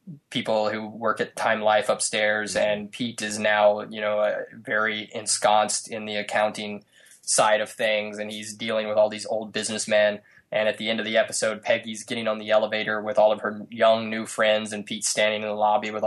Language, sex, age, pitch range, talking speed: English, male, 20-39, 105-110 Hz, 210 wpm